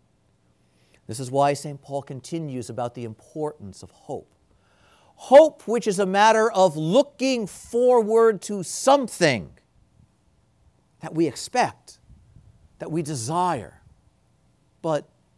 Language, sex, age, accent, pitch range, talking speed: English, male, 50-69, American, 120-195 Hz, 110 wpm